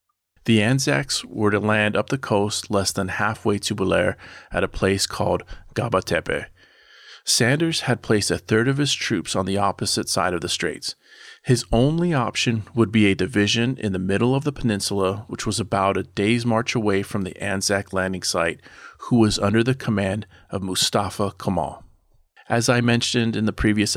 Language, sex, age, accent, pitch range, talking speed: English, male, 30-49, American, 95-120 Hz, 180 wpm